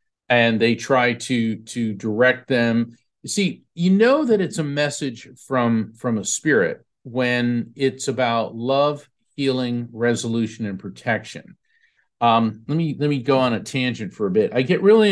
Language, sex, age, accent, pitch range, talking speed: English, male, 50-69, American, 115-145 Hz, 165 wpm